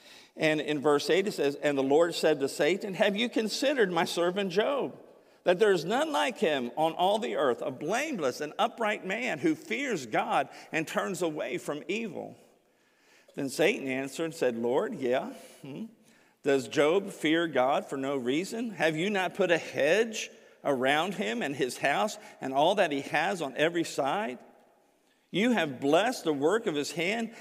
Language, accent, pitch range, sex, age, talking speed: English, American, 135-200 Hz, male, 50-69, 180 wpm